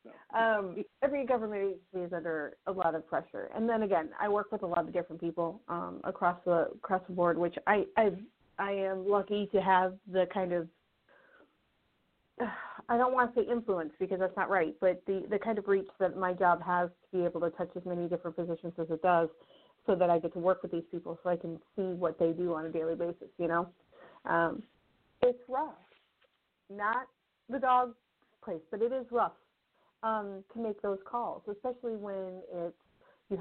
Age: 30-49